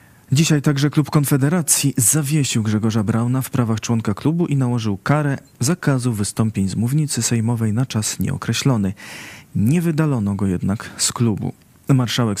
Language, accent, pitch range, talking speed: Polish, native, 110-135 Hz, 140 wpm